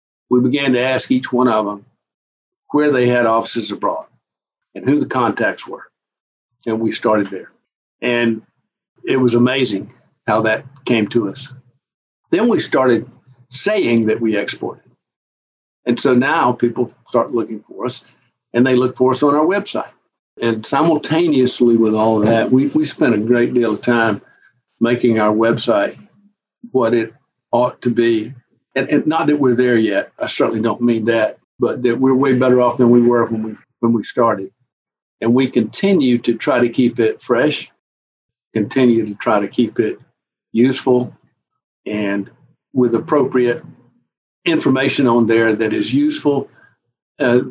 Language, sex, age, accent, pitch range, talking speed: English, male, 60-79, American, 115-130 Hz, 160 wpm